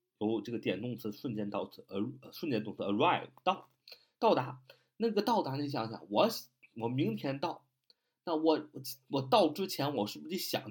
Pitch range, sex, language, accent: 120-155 Hz, male, Chinese, native